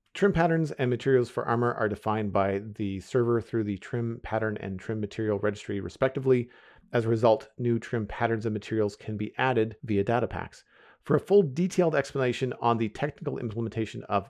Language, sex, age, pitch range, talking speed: English, male, 40-59, 105-135 Hz, 185 wpm